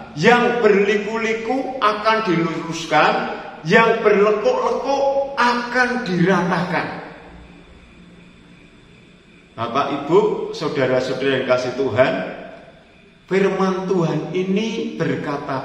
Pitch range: 150-215 Hz